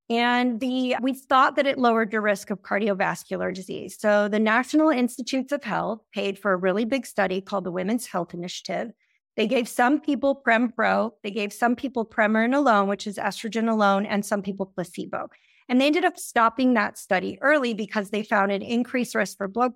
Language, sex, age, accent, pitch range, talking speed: English, female, 30-49, American, 200-255 Hz, 195 wpm